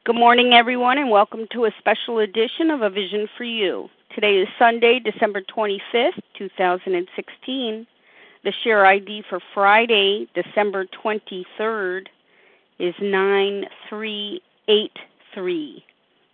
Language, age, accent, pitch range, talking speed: English, 40-59, American, 200-250 Hz, 105 wpm